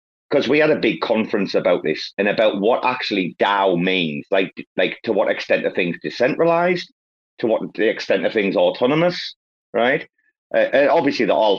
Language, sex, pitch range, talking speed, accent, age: English, male, 105-175 Hz, 180 wpm, British, 30-49